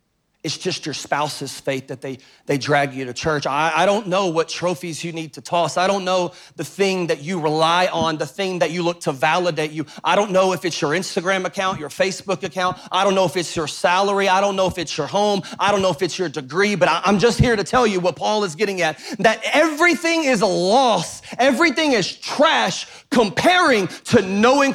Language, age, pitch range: English, 30-49, 155-200 Hz